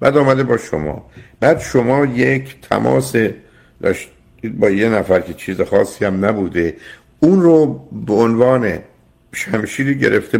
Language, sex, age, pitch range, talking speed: Persian, male, 60-79, 95-135 Hz, 135 wpm